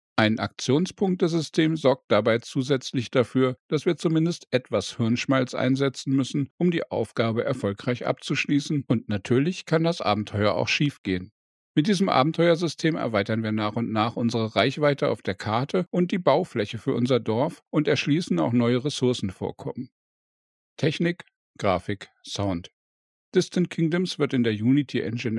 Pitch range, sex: 115-155 Hz, male